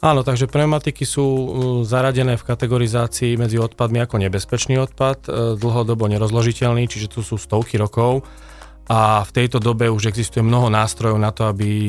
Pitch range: 110-125 Hz